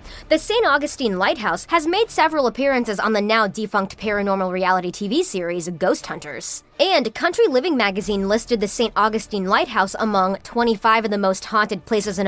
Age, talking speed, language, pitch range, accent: 20-39, 165 wpm, English, 200-275 Hz, American